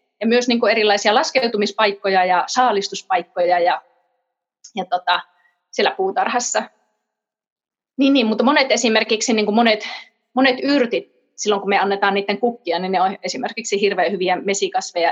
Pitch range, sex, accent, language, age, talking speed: 195-250 Hz, female, native, Finnish, 30-49, 135 wpm